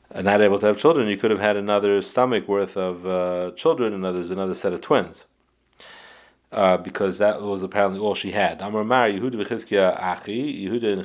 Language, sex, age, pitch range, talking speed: English, male, 30-49, 90-110 Hz, 175 wpm